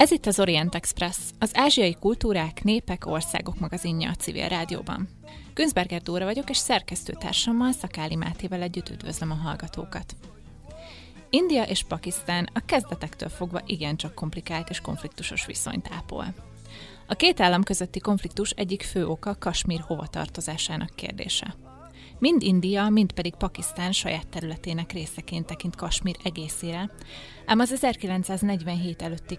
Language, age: Hungarian, 20-39